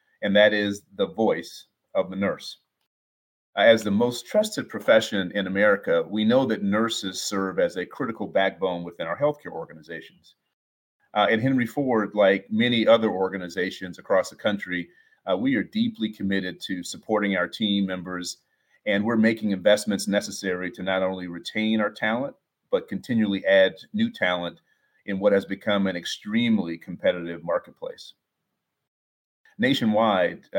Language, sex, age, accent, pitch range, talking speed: English, male, 40-59, American, 95-110 Hz, 145 wpm